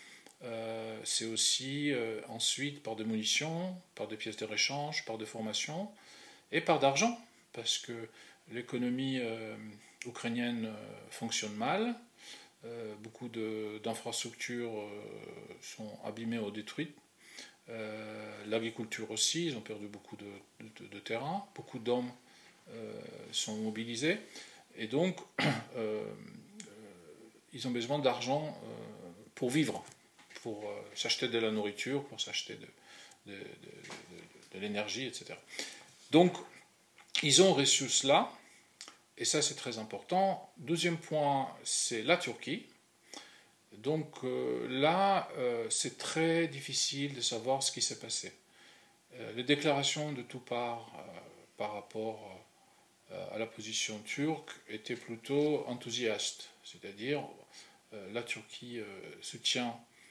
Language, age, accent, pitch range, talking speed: French, 40-59, French, 110-145 Hz, 120 wpm